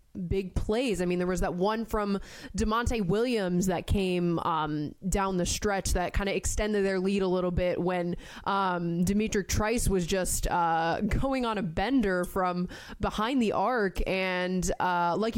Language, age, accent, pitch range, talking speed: English, 20-39, American, 180-215 Hz, 170 wpm